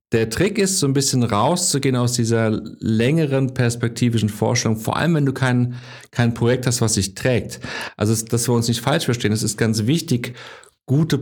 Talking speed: 185 wpm